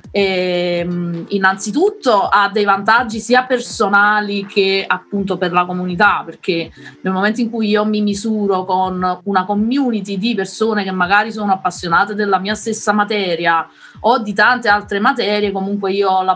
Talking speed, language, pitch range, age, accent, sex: 155 wpm, Italian, 180-210 Hz, 20-39, native, female